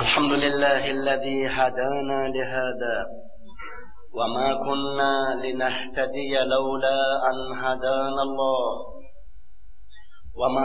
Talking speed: 75 wpm